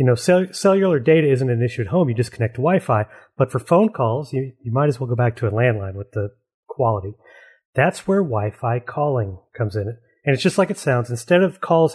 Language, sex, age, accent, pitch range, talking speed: English, male, 30-49, American, 120-155 Hz, 230 wpm